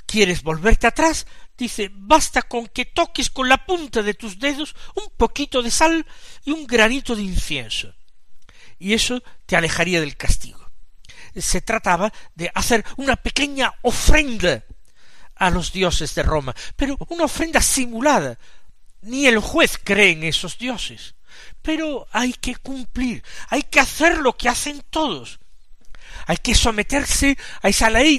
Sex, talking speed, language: male, 145 wpm, Spanish